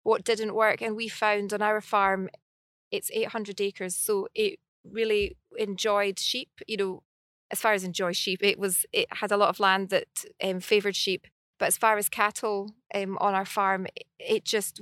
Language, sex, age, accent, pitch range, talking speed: English, female, 20-39, British, 195-220 Hz, 195 wpm